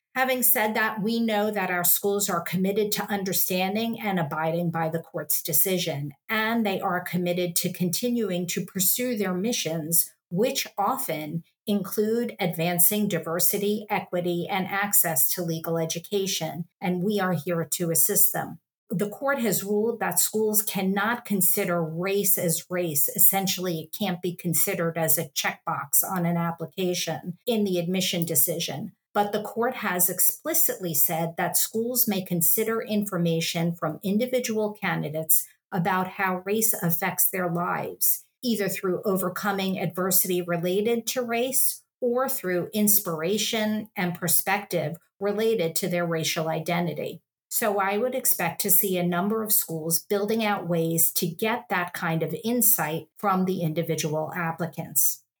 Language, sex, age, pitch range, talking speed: English, female, 50-69, 170-210 Hz, 145 wpm